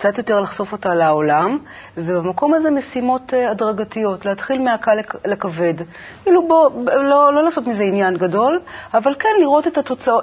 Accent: native